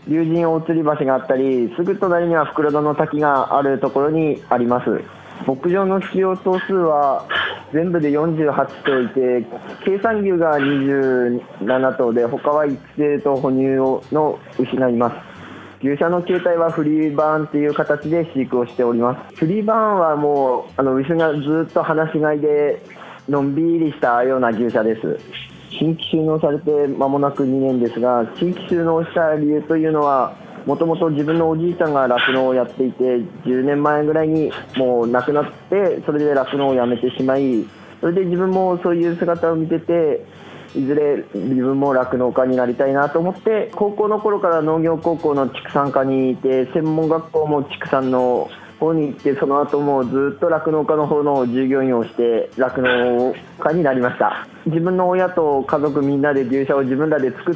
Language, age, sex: Japanese, 20-39, male